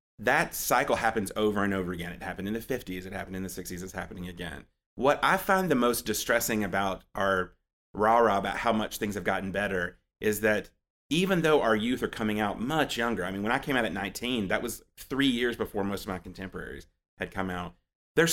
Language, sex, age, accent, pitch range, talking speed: English, male, 30-49, American, 95-120 Hz, 225 wpm